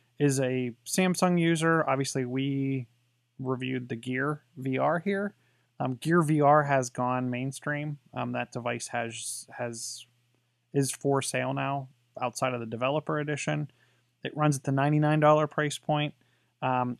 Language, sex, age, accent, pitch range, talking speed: English, male, 20-39, American, 120-145 Hz, 145 wpm